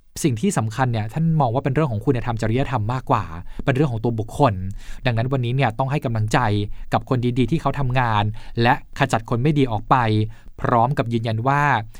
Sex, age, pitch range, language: male, 20-39, 115-145 Hz, Thai